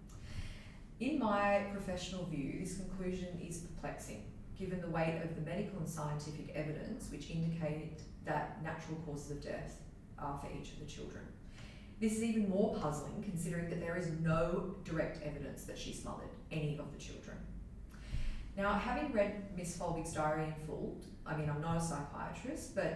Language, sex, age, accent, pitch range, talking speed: English, female, 30-49, Australian, 150-190 Hz, 165 wpm